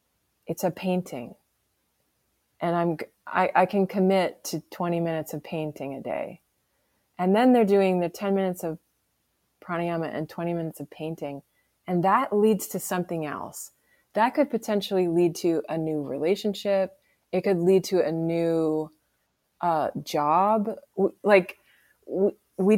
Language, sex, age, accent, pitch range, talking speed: English, female, 20-39, American, 160-195 Hz, 140 wpm